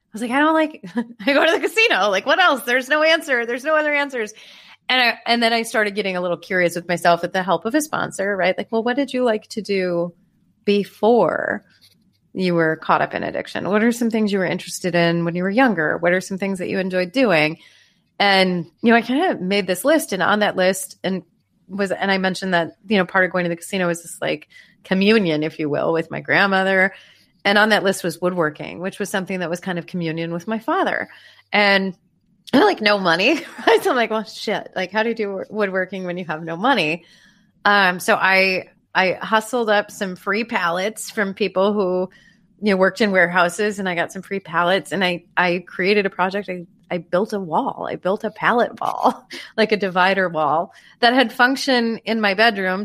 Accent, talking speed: American, 225 wpm